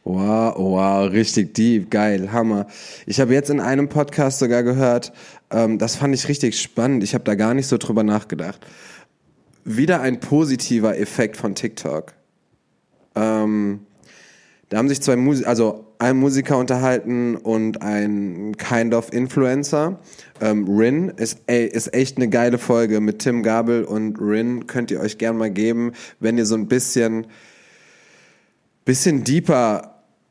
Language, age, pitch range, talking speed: German, 20-39, 110-135 Hz, 150 wpm